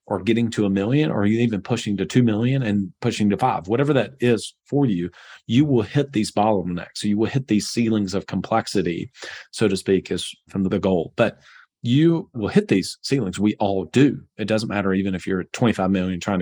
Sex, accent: male, American